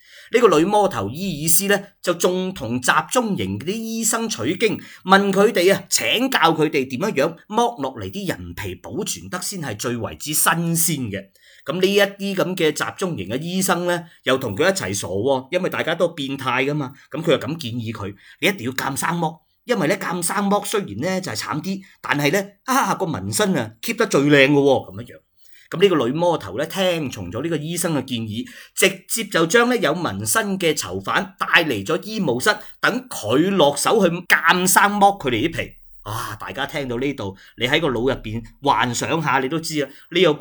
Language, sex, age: Chinese, male, 30-49